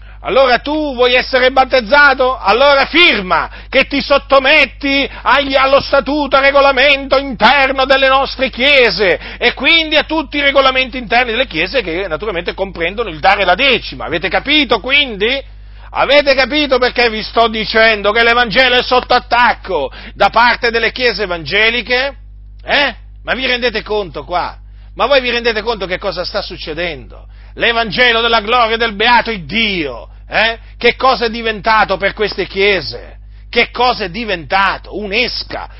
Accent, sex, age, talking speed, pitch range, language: native, male, 40-59, 145 wpm, 210-265 Hz, Italian